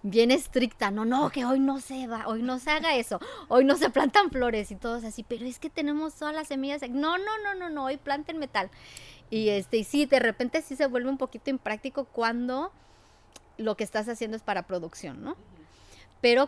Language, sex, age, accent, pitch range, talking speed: English, male, 30-49, Mexican, 195-255 Hz, 215 wpm